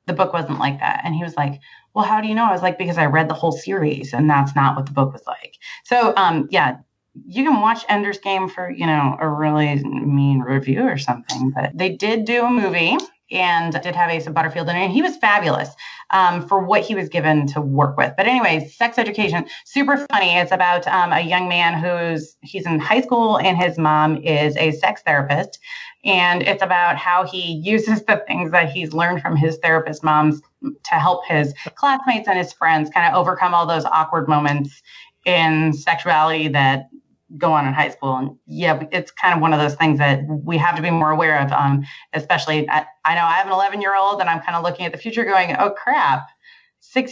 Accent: American